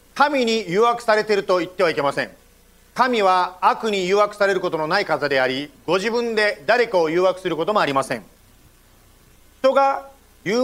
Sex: male